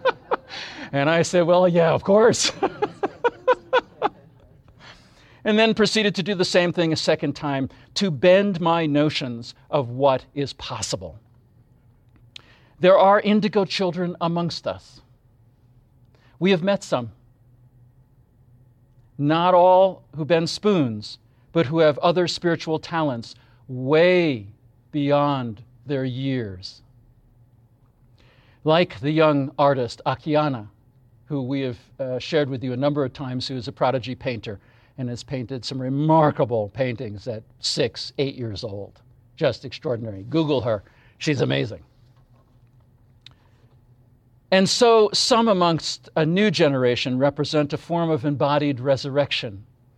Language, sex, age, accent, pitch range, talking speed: English, male, 50-69, American, 120-165 Hz, 120 wpm